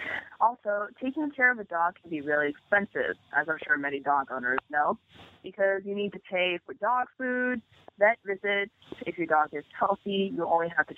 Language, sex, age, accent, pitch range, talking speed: English, female, 20-39, American, 155-215 Hz, 195 wpm